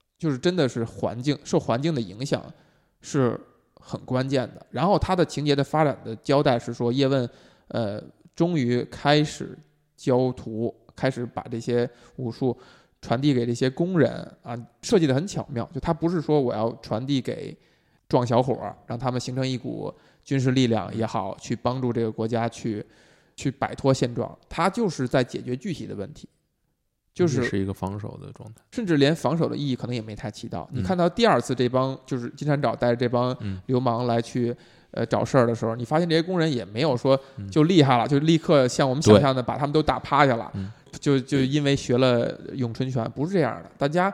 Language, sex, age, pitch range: Chinese, male, 20-39, 120-155 Hz